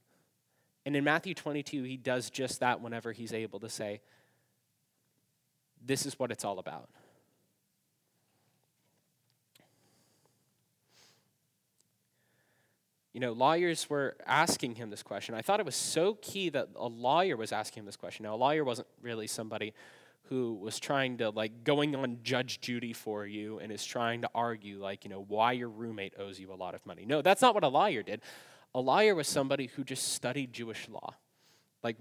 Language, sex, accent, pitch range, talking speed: English, male, American, 105-135 Hz, 170 wpm